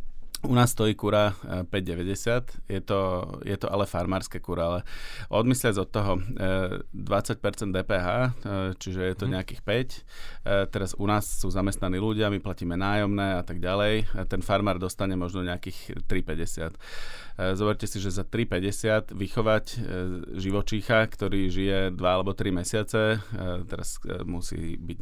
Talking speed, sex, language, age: 135 wpm, male, Slovak, 30-49